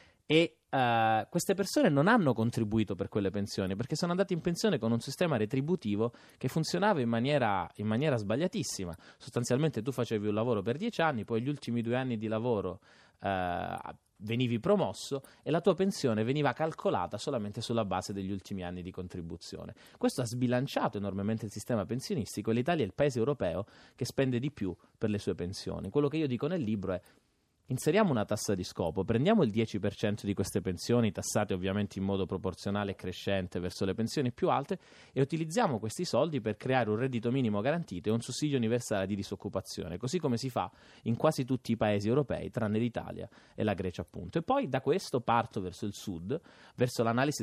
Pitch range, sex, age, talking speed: 100-135 Hz, male, 30-49, 185 wpm